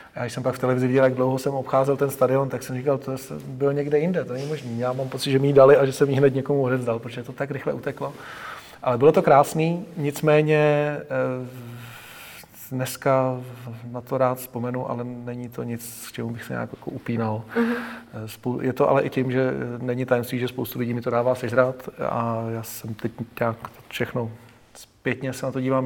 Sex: male